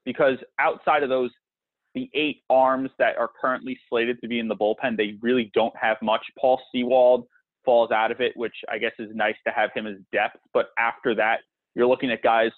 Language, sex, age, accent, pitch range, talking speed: English, male, 30-49, American, 120-155 Hz, 210 wpm